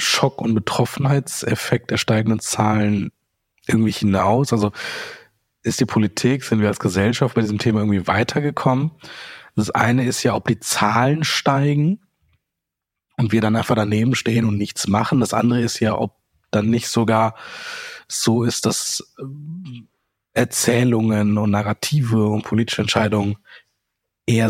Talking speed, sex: 135 wpm, male